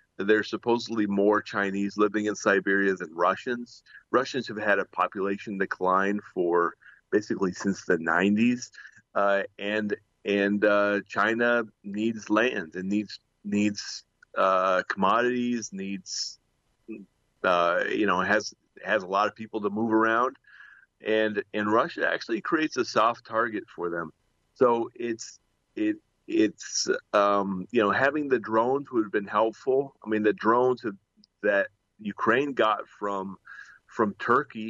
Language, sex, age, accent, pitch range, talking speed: English, male, 30-49, American, 95-110 Hz, 140 wpm